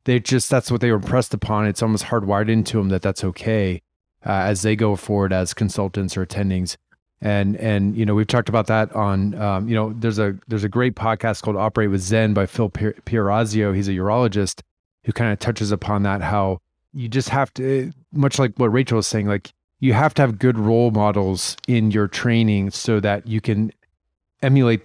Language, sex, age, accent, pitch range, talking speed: English, male, 30-49, American, 100-120 Hz, 210 wpm